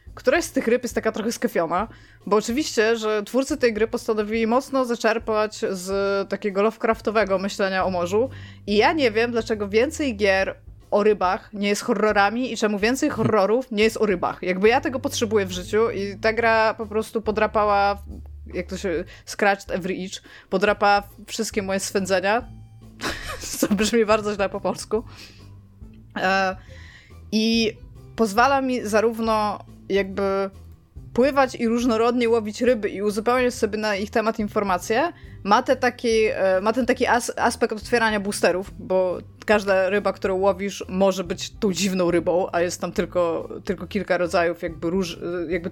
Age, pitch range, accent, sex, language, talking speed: 20-39, 185-230 Hz, native, female, Polish, 150 wpm